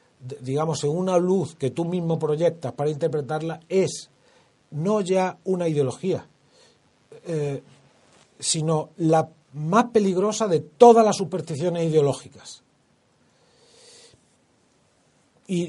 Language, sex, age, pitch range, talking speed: Spanish, male, 40-59, 140-180 Hz, 100 wpm